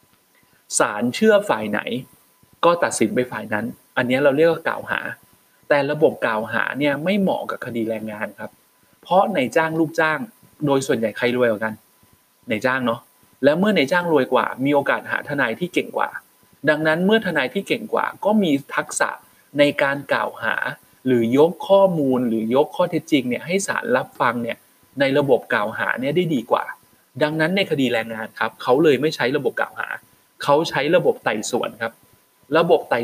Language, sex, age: Thai, male, 20-39